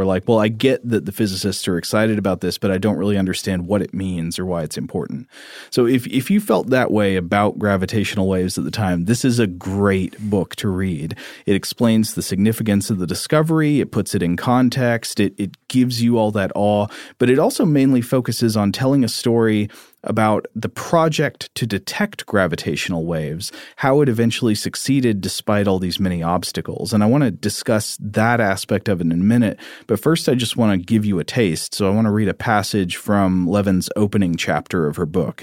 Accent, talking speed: American, 210 wpm